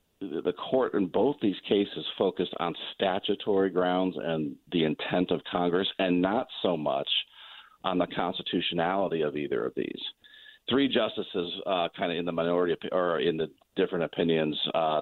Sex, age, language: male, 50-69, English